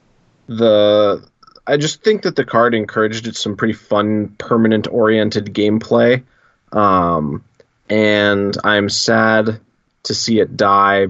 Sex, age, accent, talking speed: male, 20-39, American, 120 wpm